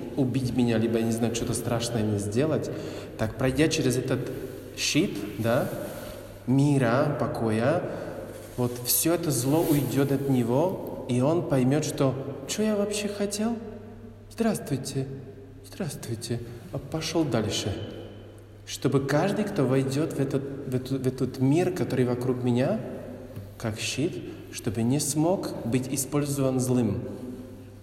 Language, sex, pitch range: Russian, male, 115-145 Hz